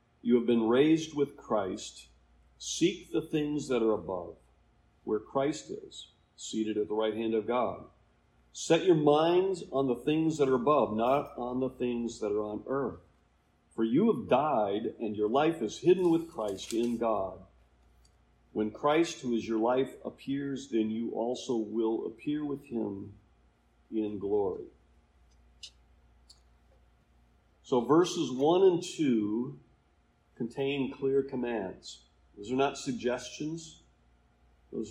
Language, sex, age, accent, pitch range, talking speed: English, male, 50-69, American, 95-135 Hz, 140 wpm